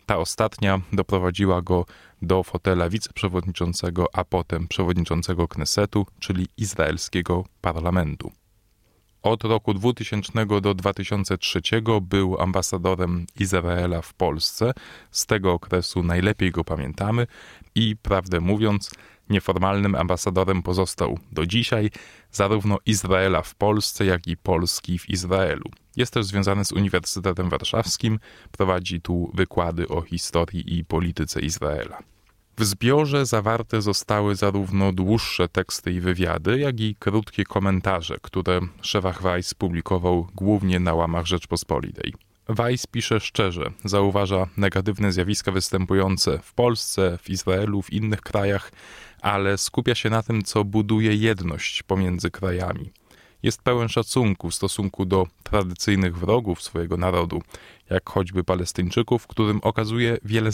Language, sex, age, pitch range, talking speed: Polish, male, 20-39, 90-105 Hz, 120 wpm